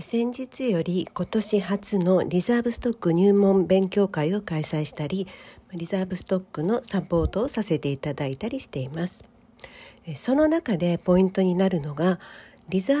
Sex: female